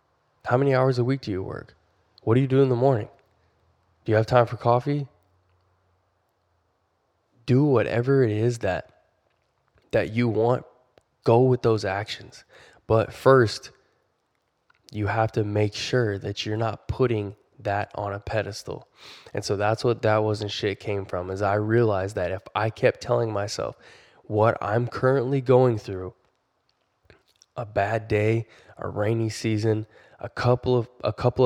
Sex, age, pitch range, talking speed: male, 10-29, 105-120 Hz, 155 wpm